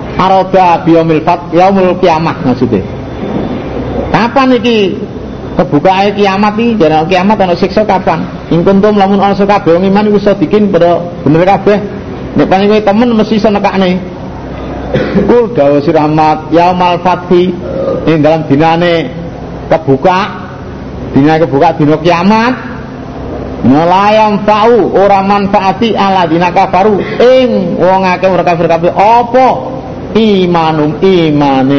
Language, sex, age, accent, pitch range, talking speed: Indonesian, male, 50-69, native, 155-200 Hz, 115 wpm